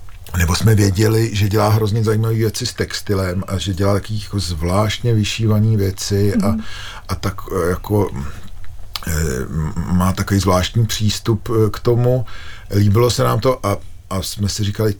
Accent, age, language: native, 40-59, Czech